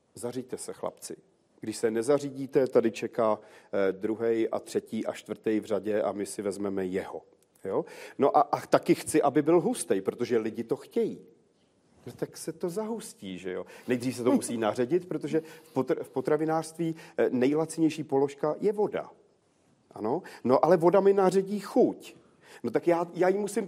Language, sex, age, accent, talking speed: Czech, male, 40-59, native, 170 wpm